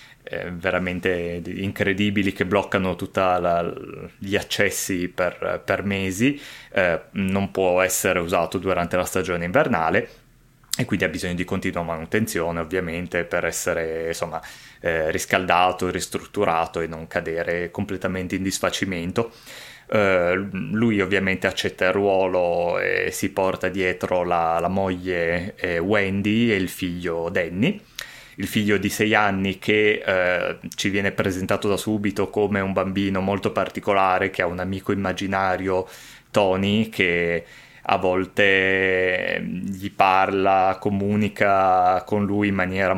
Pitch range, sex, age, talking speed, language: 90-100 Hz, male, 20-39, 125 wpm, Italian